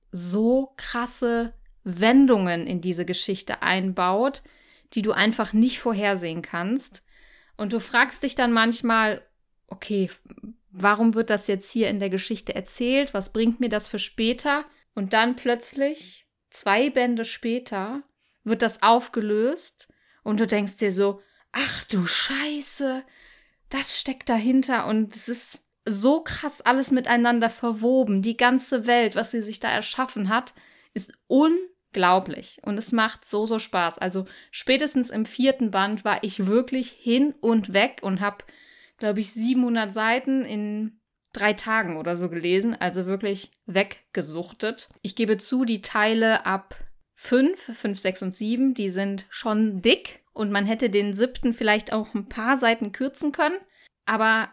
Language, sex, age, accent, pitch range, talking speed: German, female, 20-39, German, 205-250 Hz, 145 wpm